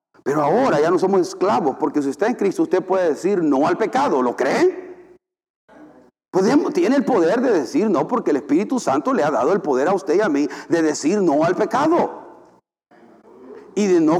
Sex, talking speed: male, 200 wpm